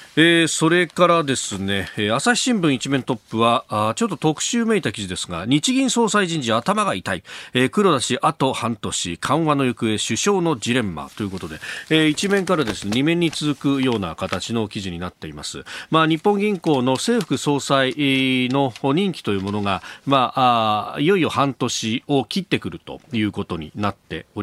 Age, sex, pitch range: 40-59, male, 100-150 Hz